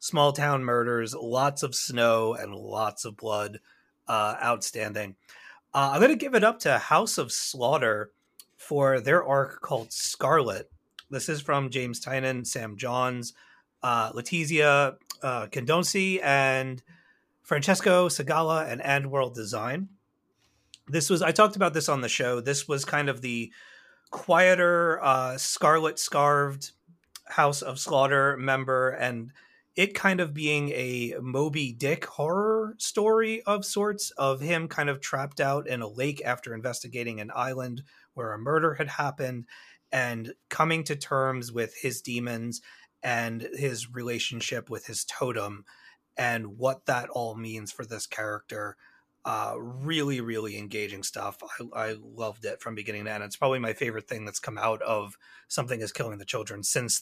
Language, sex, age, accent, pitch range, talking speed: English, male, 30-49, American, 120-150 Hz, 155 wpm